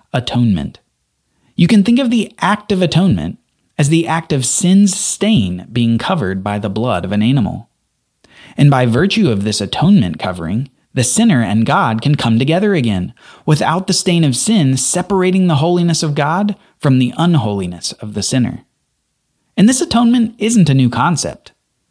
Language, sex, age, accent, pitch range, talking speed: English, male, 30-49, American, 120-185 Hz, 165 wpm